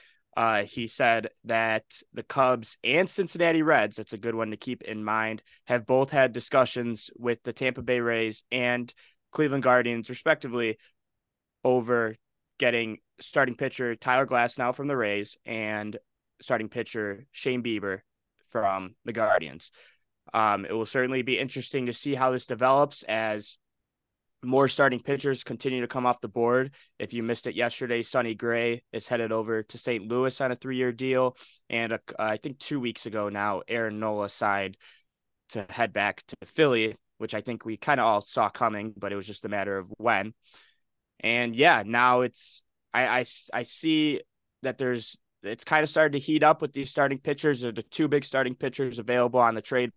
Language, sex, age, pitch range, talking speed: English, male, 20-39, 110-130 Hz, 185 wpm